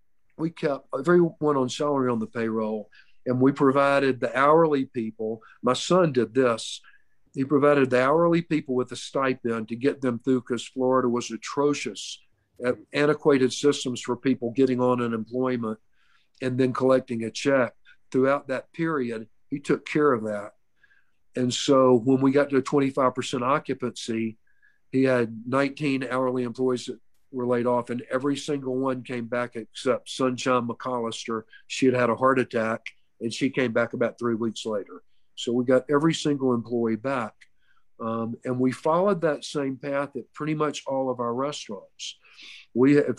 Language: English